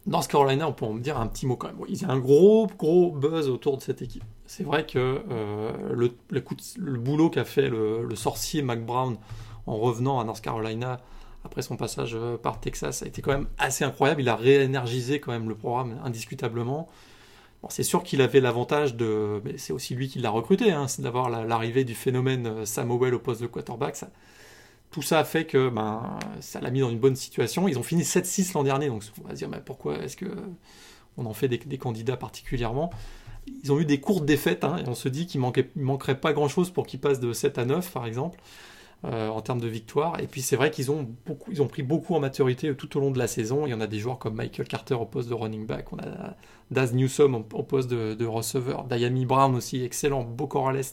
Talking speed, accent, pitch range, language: 235 wpm, French, 120-145 Hz, French